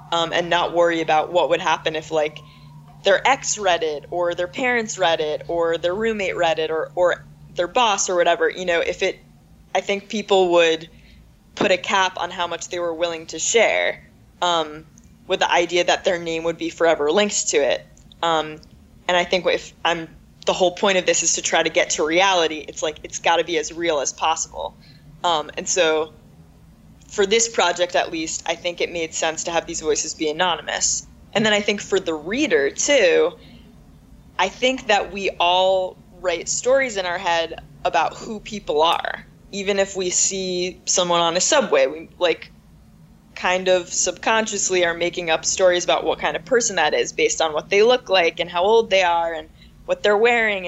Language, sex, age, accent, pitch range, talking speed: English, female, 20-39, American, 165-200 Hz, 200 wpm